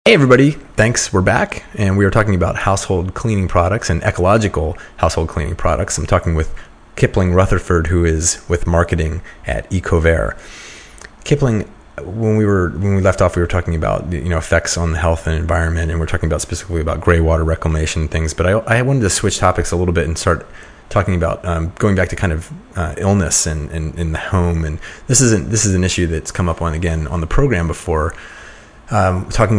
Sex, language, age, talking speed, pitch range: male, English, 30-49, 225 wpm, 80-95 Hz